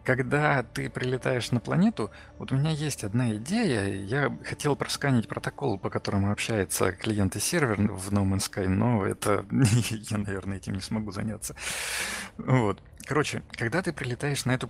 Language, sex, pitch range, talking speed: Russian, male, 105-145 Hz, 155 wpm